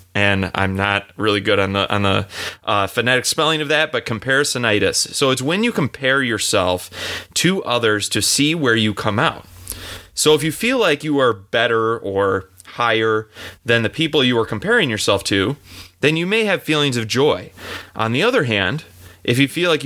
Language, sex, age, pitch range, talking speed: English, male, 30-49, 100-140 Hz, 190 wpm